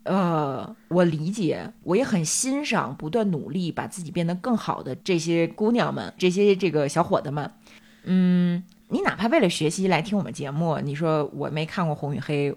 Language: Chinese